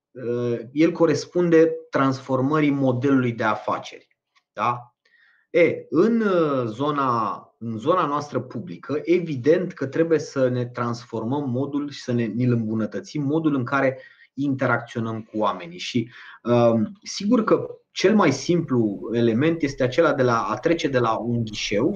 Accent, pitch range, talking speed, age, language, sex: native, 115-155 Hz, 135 wpm, 30-49, Romanian, male